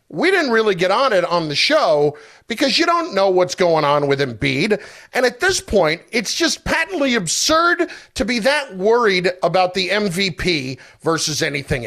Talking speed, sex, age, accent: 175 wpm, male, 40-59, American